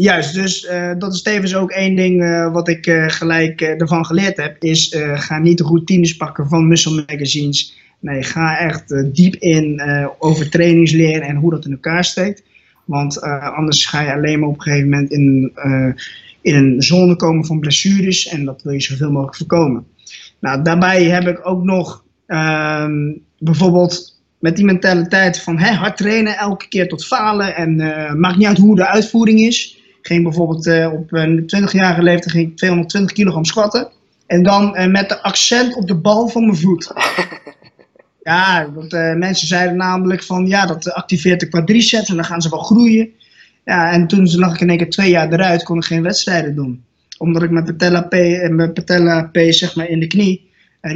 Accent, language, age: Dutch, Dutch, 20-39